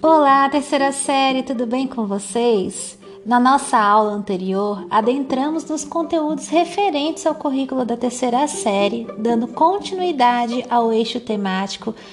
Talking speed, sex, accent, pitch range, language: 125 wpm, female, Brazilian, 210-285 Hz, Portuguese